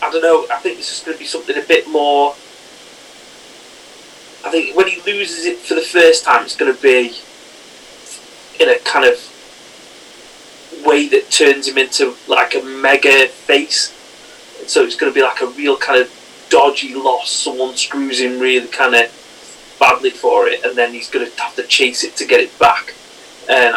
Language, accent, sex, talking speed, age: English, British, male, 190 wpm, 30-49